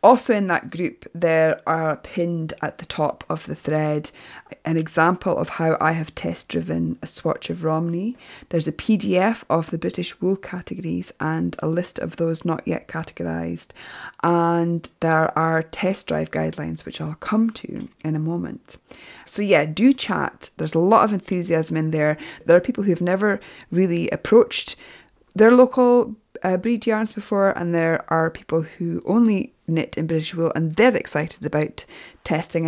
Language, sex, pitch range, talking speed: English, female, 160-200 Hz, 170 wpm